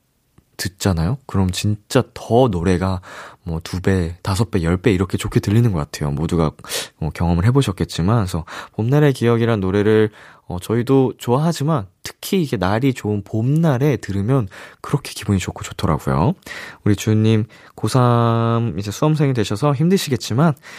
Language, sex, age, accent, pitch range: Korean, male, 20-39, native, 90-135 Hz